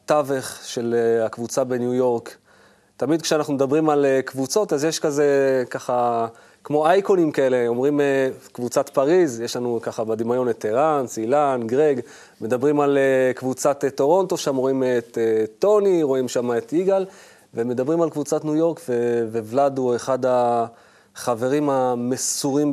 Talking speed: 130 wpm